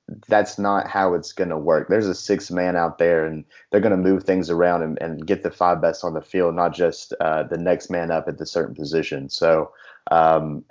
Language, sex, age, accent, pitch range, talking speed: English, male, 30-49, American, 80-100 Hz, 235 wpm